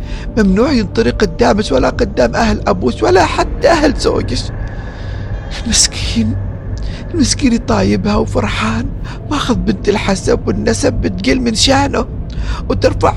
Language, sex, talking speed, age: Arabic, male, 105 wpm, 50-69